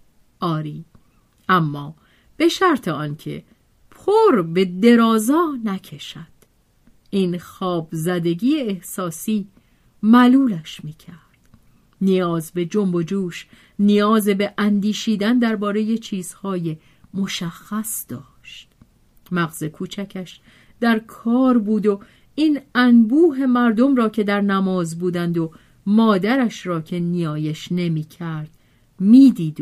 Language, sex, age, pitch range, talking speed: Persian, female, 40-59, 165-235 Hz, 95 wpm